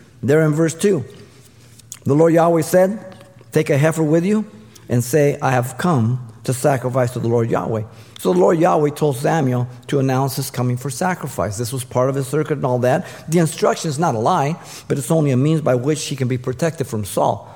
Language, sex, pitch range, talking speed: English, male, 120-155 Hz, 220 wpm